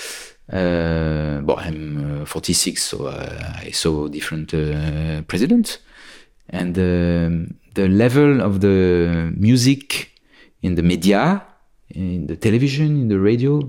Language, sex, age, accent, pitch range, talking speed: English, male, 40-59, French, 85-125 Hz, 125 wpm